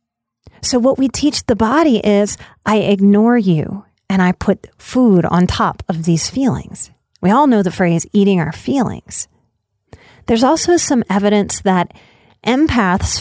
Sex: female